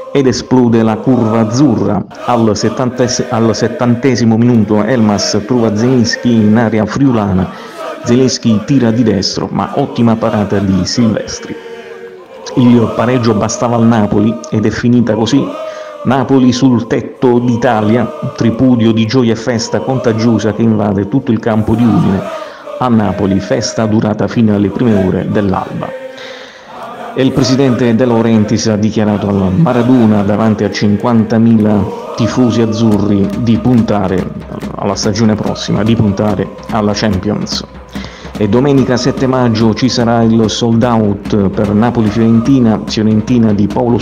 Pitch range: 110-125 Hz